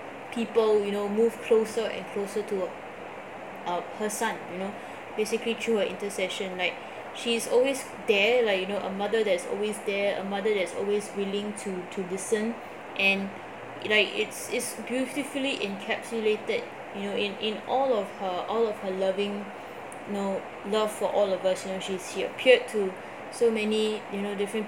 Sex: female